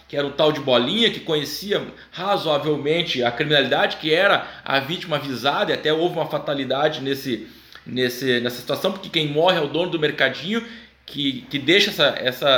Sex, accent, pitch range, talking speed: male, Brazilian, 150-230 Hz, 180 wpm